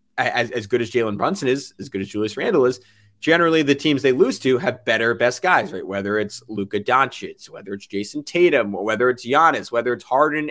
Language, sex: English, male